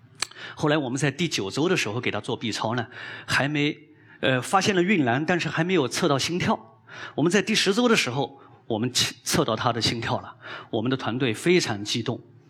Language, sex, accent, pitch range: Chinese, male, native, 130-170 Hz